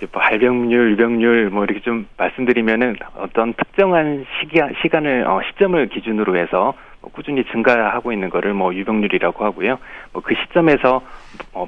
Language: Korean